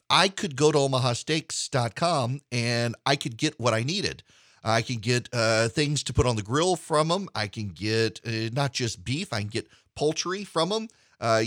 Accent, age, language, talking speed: American, 40-59, English, 200 wpm